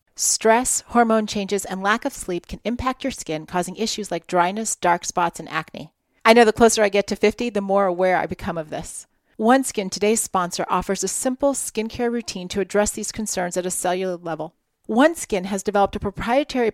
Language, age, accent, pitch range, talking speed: English, 40-59, American, 180-230 Hz, 205 wpm